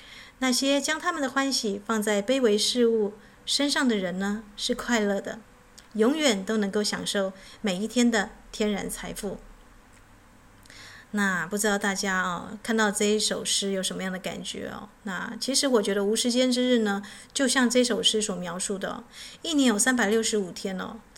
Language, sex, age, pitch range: Chinese, female, 30-49, 200-240 Hz